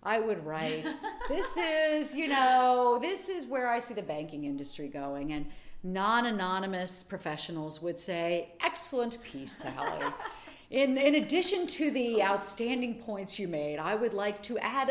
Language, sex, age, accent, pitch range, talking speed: English, female, 40-59, American, 160-235 Hz, 155 wpm